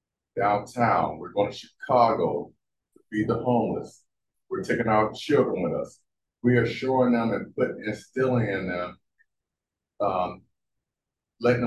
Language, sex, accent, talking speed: English, male, American, 130 wpm